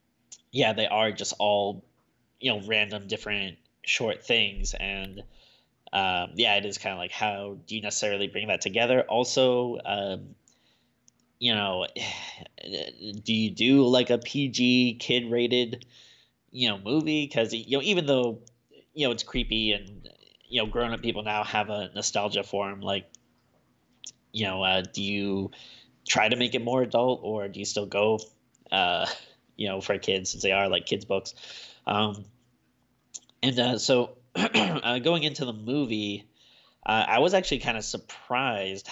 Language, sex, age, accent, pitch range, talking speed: English, male, 20-39, American, 100-125 Hz, 160 wpm